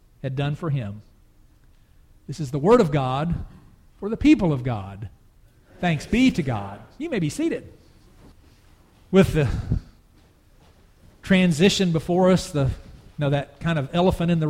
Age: 40-59